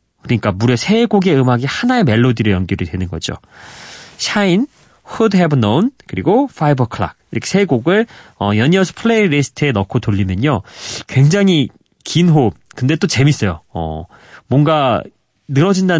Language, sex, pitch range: Korean, male, 105-155 Hz